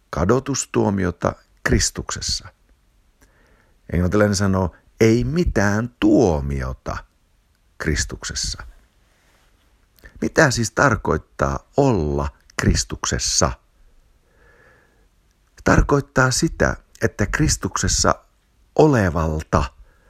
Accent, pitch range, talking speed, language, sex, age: native, 75-115 Hz, 55 wpm, Finnish, male, 60-79